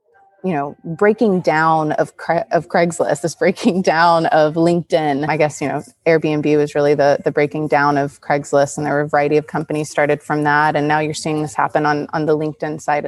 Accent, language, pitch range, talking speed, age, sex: American, English, 150-185 Hz, 215 wpm, 20-39, female